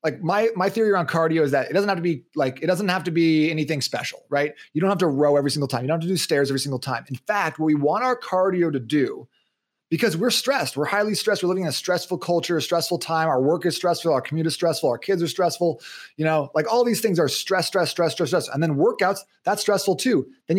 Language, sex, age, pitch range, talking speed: English, male, 30-49, 145-190 Hz, 275 wpm